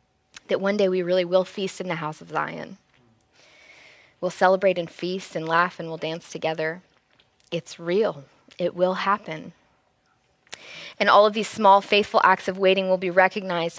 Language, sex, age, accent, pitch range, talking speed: English, female, 20-39, American, 175-205 Hz, 170 wpm